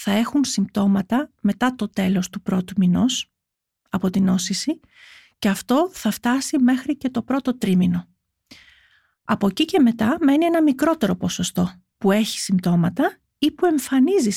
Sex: female